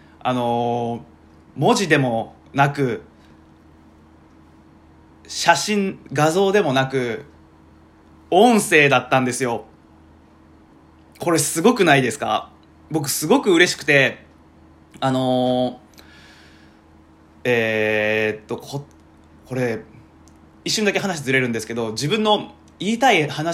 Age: 20-39